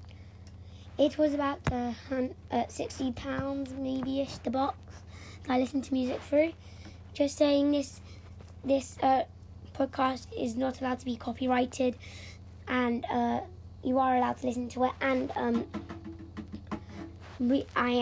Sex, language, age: female, English, 10-29